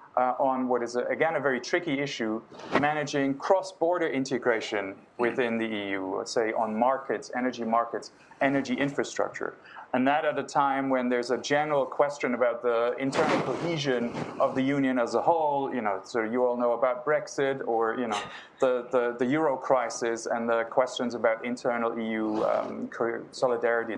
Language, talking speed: English, 170 wpm